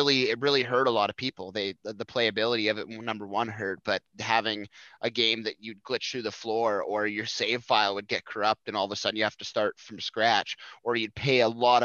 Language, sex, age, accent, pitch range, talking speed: English, male, 20-39, American, 105-120 Hz, 250 wpm